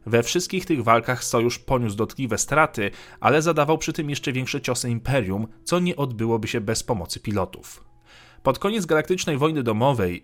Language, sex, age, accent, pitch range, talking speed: Polish, male, 30-49, native, 110-145 Hz, 165 wpm